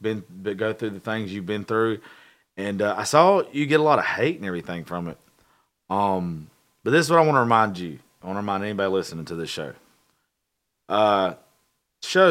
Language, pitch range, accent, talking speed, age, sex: English, 95-115 Hz, American, 210 wpm, 30-49, male